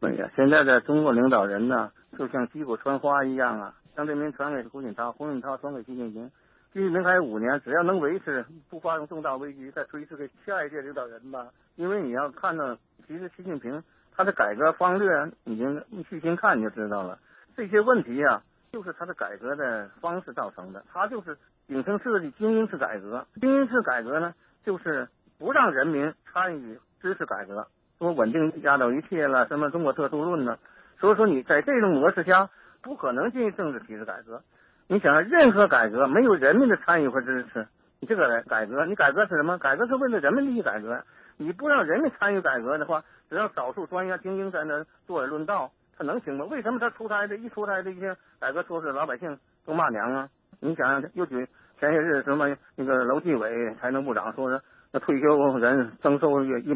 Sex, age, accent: male, 50-69, native